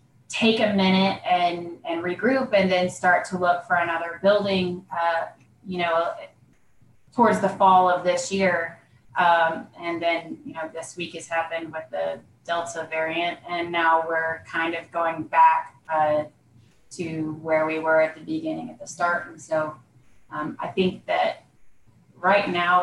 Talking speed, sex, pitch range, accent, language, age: 165 wpm, female, 155-180 Hz, American, English, 20-39